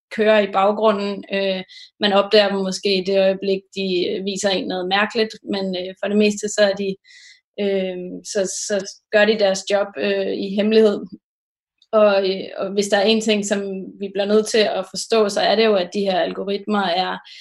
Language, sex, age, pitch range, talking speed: Danish, female, 20-39, 195-215 Hz, 195 wpm